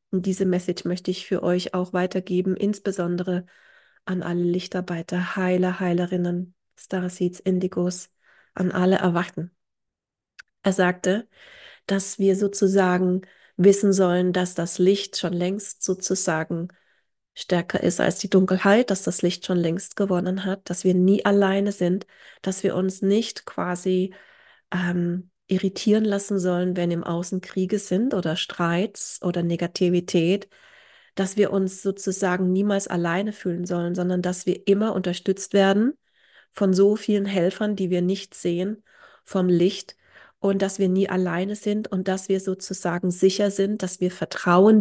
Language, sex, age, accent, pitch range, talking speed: German, female, 30-49, German, 180-195 Hz, 145 wpm